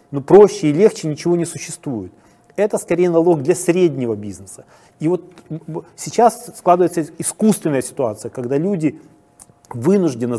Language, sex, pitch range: Ukrainian, male, 135-190 Hz